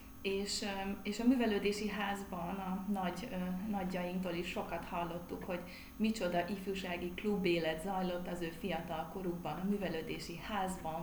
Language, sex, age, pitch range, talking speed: Hungarian, female, 30-49, 170-205 Hz, 130 wpm